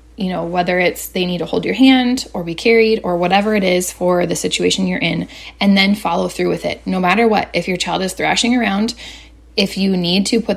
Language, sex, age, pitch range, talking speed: English, female, 20-39, 180-220 Hz, 240 wpm